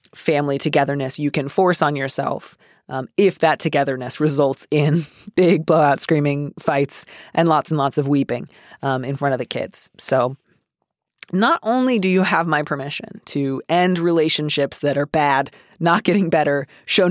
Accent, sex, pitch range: American, female, 140-180 Hz